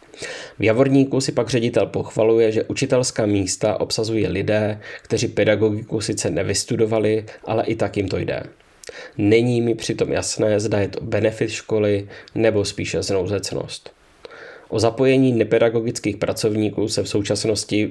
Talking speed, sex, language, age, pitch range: 135 wpm, male, English, 20-39, 100-115 Hz